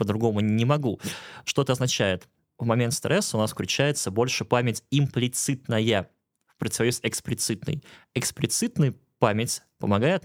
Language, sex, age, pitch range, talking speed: Russian, male, 20-39, 105-140 Hz, 125 wpm